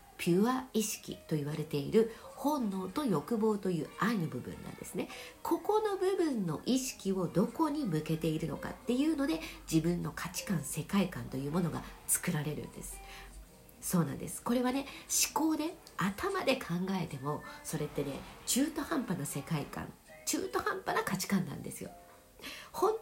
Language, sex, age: Japanese, female, 50-69